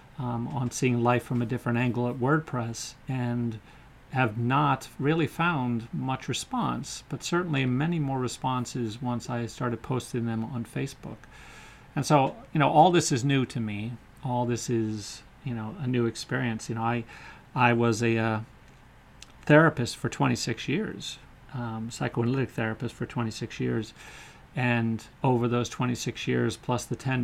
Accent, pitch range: American, 115-130 Hz